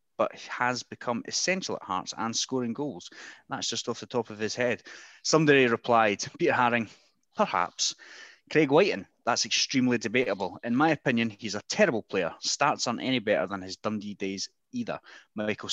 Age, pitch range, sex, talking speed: 30-49, 105-130 Hz, male, 170 wpm